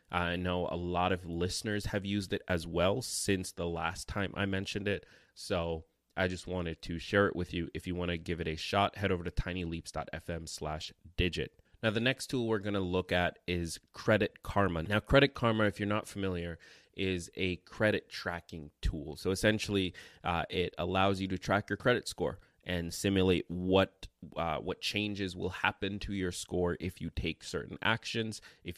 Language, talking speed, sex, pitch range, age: English, 190 wpm, male, 85-100 Hz, 20-39